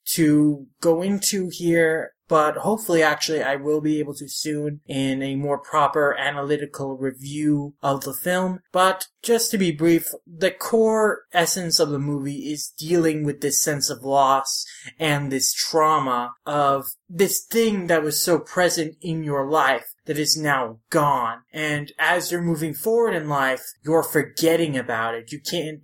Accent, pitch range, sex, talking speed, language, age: American, 145-175 Hz, male, 165 wpm, English, 20-39